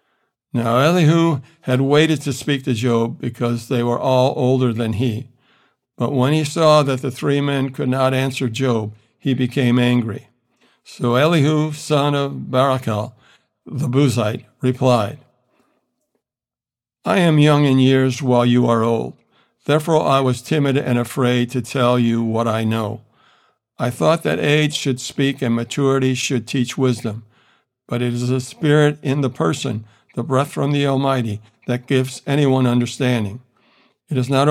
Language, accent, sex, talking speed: English, American, male, 155 wpm